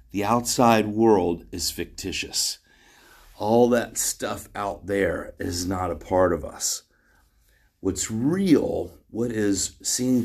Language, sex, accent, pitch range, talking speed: English, male, American, 85-110 Hz, 125 wpm